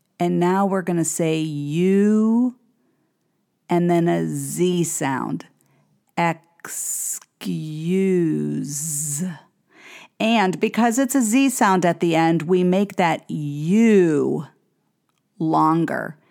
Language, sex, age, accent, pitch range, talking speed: English, female, 50-69, American, 170-230 Hz, 100 wpm